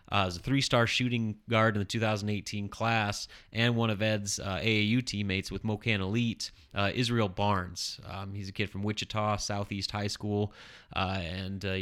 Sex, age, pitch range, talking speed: male, 30-49, 95-110 Hz, 180 wpm